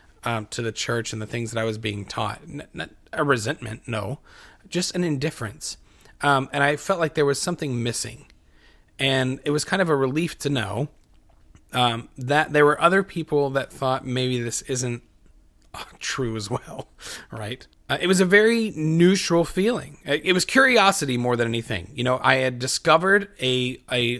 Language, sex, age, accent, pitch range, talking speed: English, male, 30-49, American, 120-155 Hz, 185 wpm